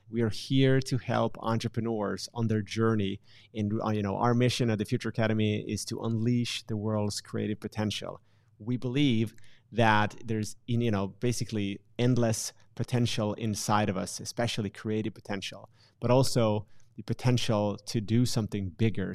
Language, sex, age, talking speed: English, male, 30-49, 150 wpm